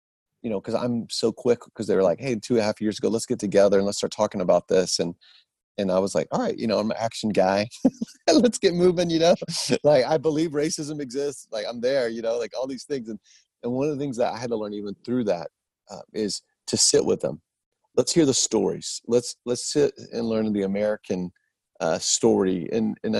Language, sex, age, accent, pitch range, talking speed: English, male, 30-49, American, 105-145 Hz, 240 wpm